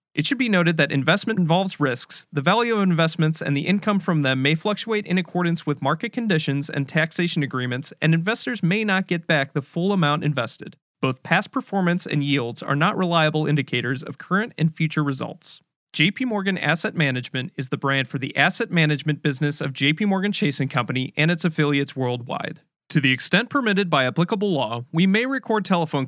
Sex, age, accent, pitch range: male, 30-49, American, 140-185 Hz